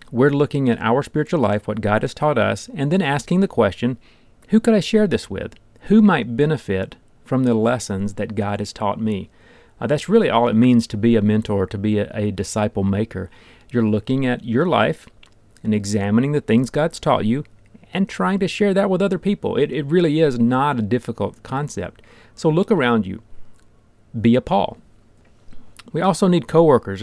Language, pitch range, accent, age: English, 110-140 Hz, American, 40-59